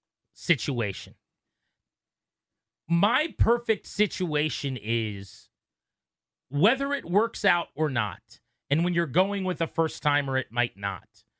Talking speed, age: 110 wpm, 40-59